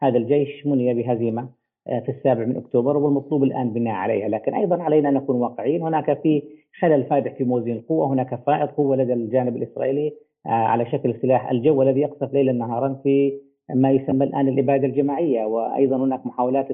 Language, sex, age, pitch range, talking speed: Arabic, female, 40-59, 125-145 Hz, 170 wpm